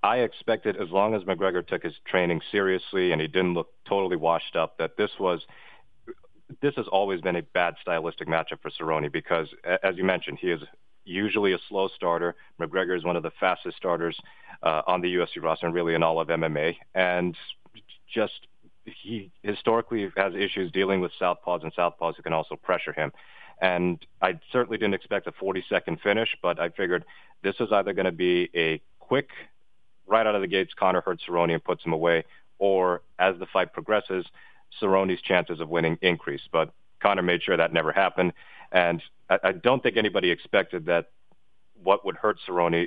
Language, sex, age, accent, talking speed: English, male, 30-49, American, 190 wpm